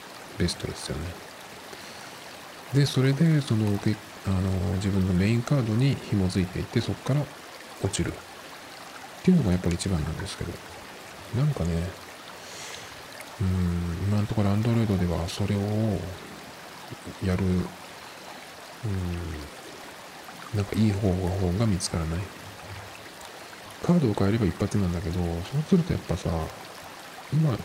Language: Japanese